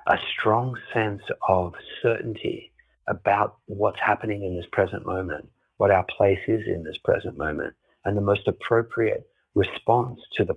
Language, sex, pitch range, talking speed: English, male, 90-120 Hz, 155 wpm